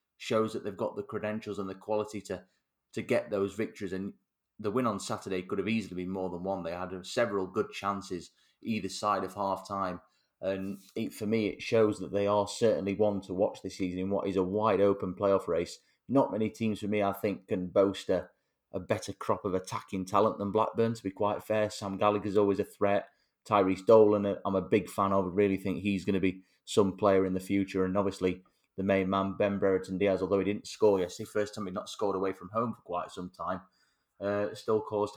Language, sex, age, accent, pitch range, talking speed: English, male, 30-49, British, 95-110 Hz, 220 wpm